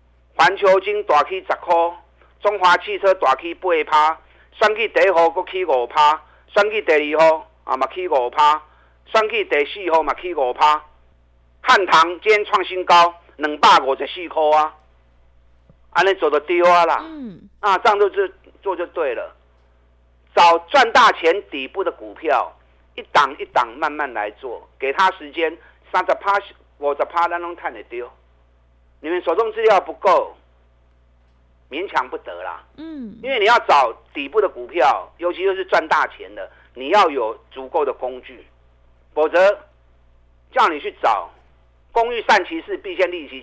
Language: Chinese